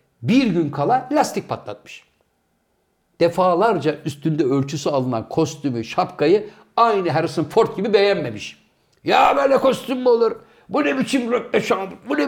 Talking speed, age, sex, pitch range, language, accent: 130 wpm, 60-79, male, 150-250 Hz, Turkish, native